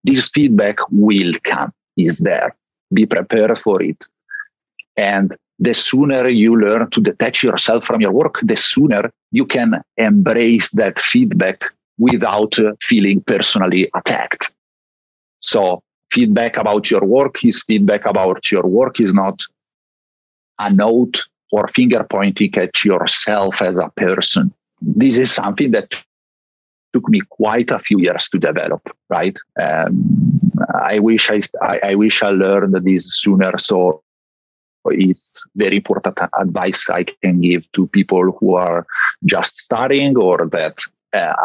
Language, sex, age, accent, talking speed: English, male, 40-59, Italian, 135 wpm